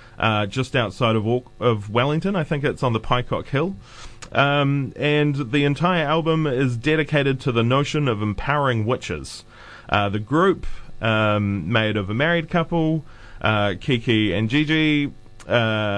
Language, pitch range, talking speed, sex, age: English, 110-150 Hz, 150 wpm, male, 20-39